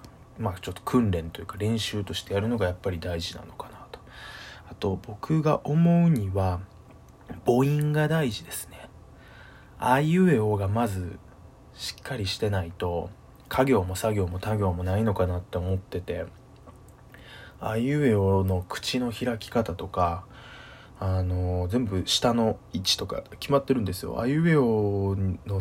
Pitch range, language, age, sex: 90-120 Hz, Japanese, 20-39, male